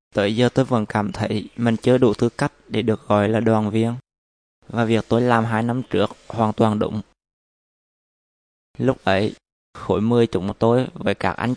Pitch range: 105-120 Hz